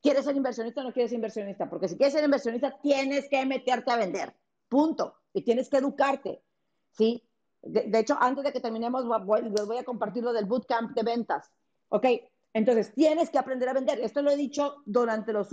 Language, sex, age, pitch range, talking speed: Spanish, female, 40-59, 220-275 Hz, 210 wpm